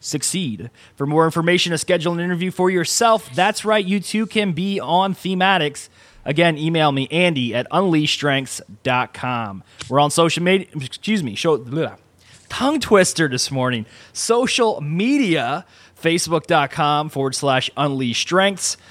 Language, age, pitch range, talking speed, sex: English, 20-39, 145-195 Hz, 140 wpm, male